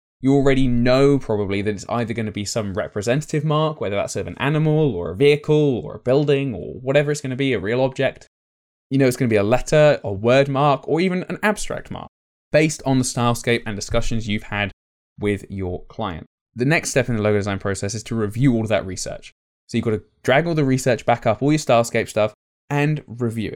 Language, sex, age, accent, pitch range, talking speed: English, male, 20-39, British, 105-140 Hz, 230 wpm